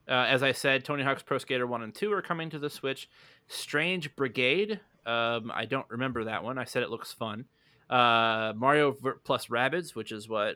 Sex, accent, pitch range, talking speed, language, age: male, American, 120-150 Hz, 205 wpm, English, 20-39